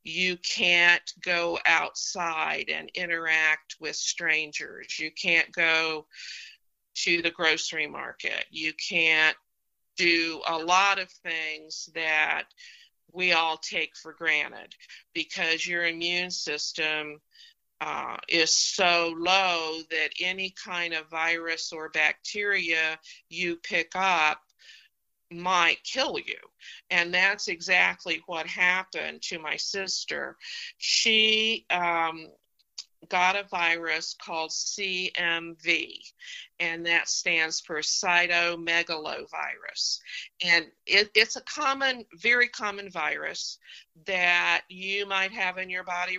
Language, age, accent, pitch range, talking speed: English, 50-69, American, 160-190 Hz, 110 wpm